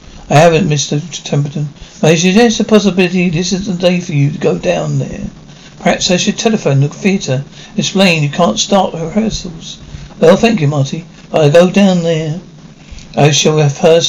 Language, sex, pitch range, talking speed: English, male, 155-185 Hz, 180 wpm